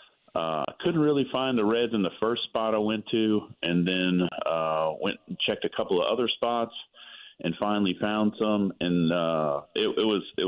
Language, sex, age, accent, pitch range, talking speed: English, male, 40-59, American, 85-110 Hz, 195 wpm